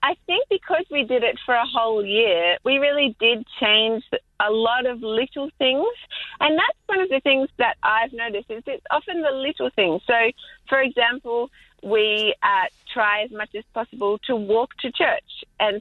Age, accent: 30-49, Australian